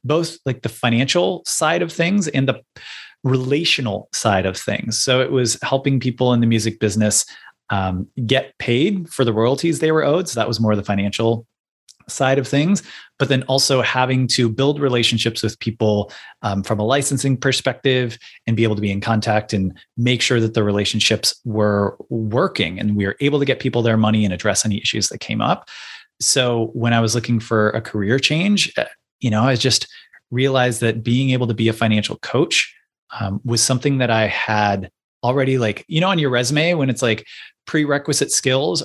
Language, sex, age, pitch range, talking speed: English, male, 20-39, 110-140 Hz, 195 wpm